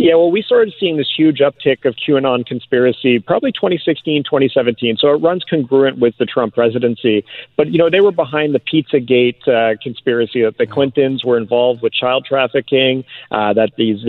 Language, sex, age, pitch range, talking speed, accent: English, male, 40-59, 115-140 Hz, 185 wpm, American